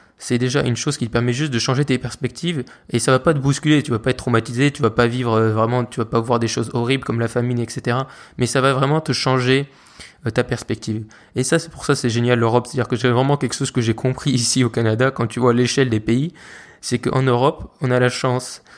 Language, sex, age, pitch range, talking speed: French, male, 20-39, 120-135 Hz, 260 wpm